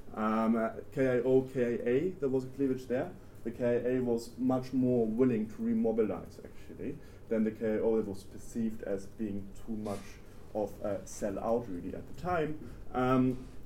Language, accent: English, German